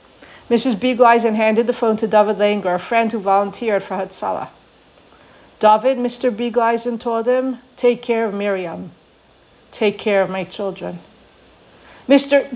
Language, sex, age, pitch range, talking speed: English, female, 50-69, 190-235 Hz, 140 wpm